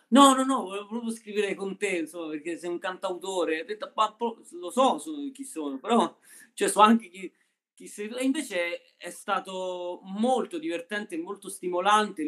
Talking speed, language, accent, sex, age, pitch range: 150 wpm, Italian, native, male, 30-49, 150-230 Hz